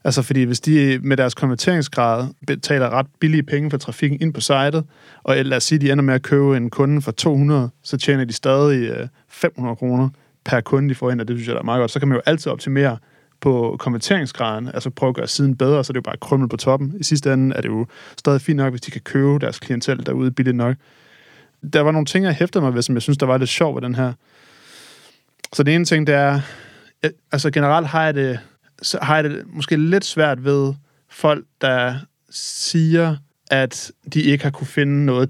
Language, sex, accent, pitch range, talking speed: Danish, male, native, 130-150 Hz, 230 wpm